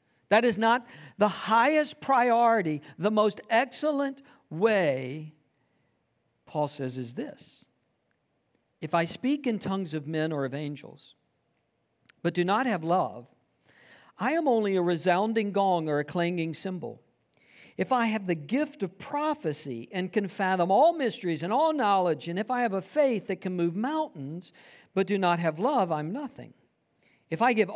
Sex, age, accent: male, 50-69, American